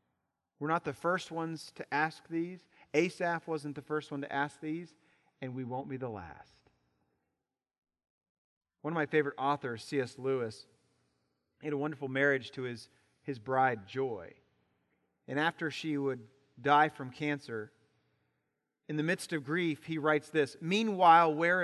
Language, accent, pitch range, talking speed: English, American, 135-180 Hz, 155 wpm